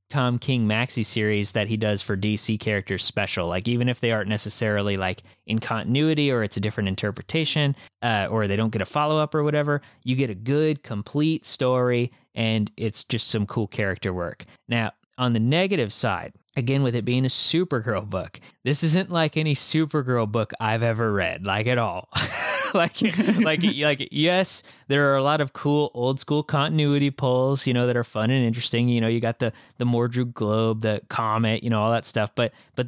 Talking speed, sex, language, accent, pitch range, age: 200 wpm, male, English, American, 110-145 Hz, 20-39